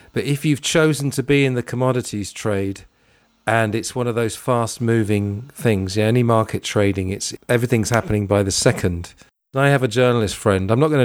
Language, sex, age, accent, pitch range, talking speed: English, male, 40-59, British, 105-130 Hz, 200 wpm